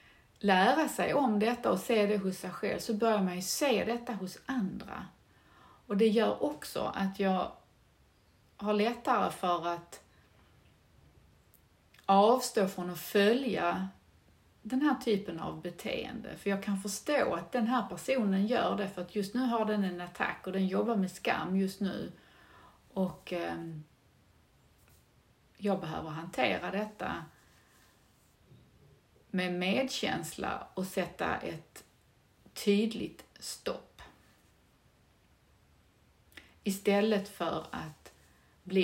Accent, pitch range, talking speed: native, 170-210 Hz, 120 wpm